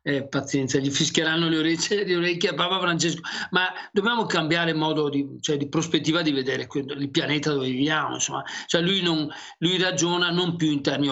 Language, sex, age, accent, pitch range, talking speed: Italian, male, 40-59, native, 145-180 Hz, 190 wpm